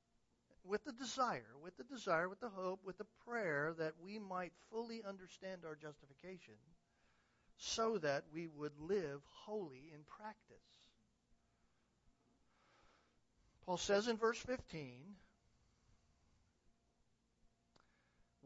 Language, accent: English, American